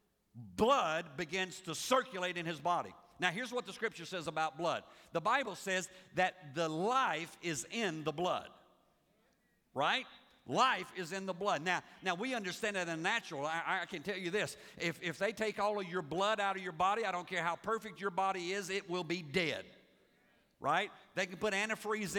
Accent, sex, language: American, male, English